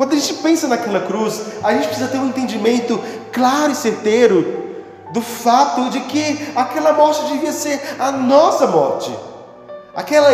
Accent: Brazilian